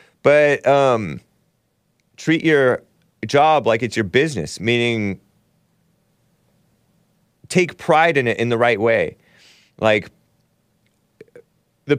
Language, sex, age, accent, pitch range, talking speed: English, male, 30-49, American, 105-155 Hz, 100 wpm